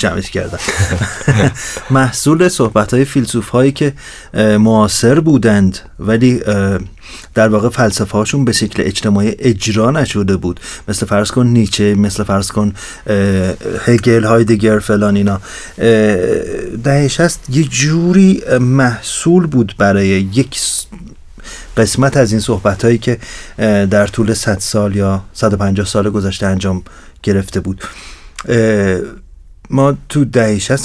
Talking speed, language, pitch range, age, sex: 115 wpm, Persian, 100-130 Hz, 40-59, male